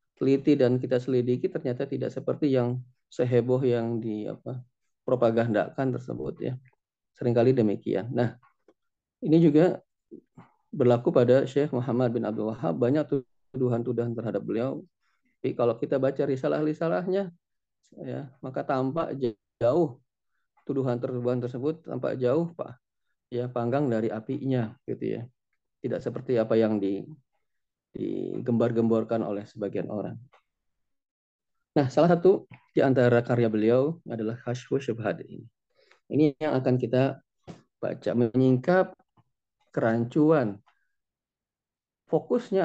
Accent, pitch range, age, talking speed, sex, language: native, 120-145 Hz, 30-49, 110 wpm, male, Indonesian